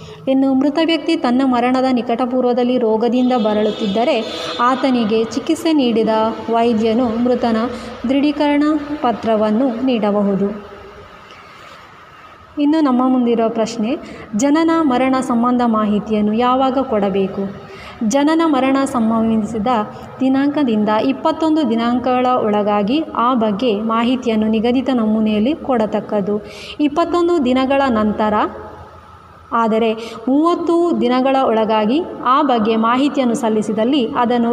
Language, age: Kannada, 20-39